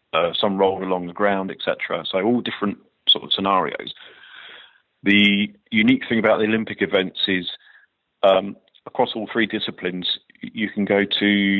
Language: English